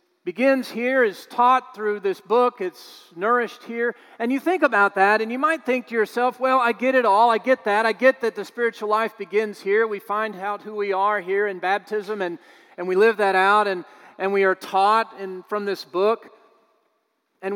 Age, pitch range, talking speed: 40-59, 195-255 Hz, 210 wpm